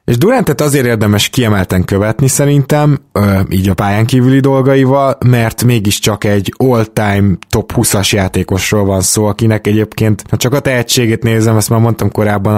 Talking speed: 155 wpm